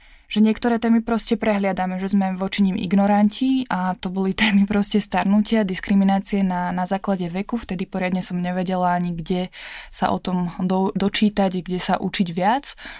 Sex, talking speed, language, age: female, 160 wpm, Slovak, 20-39